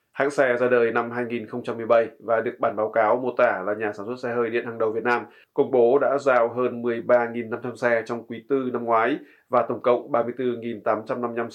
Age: 20-39